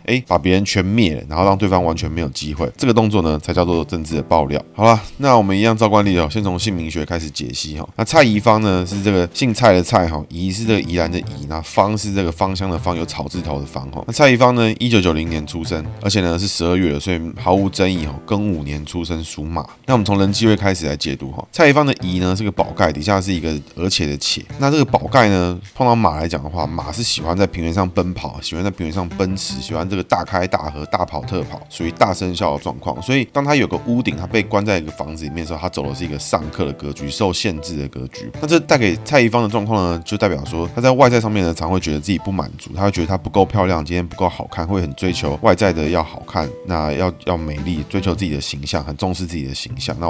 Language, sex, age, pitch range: Chinese, male, 20-39, 80-105 Hz